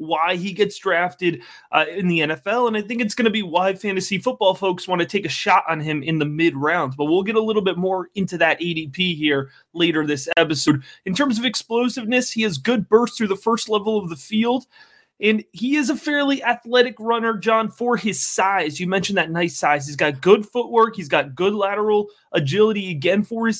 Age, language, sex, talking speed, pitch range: 30-49, English, male, 220 wpm, 180-240 Hz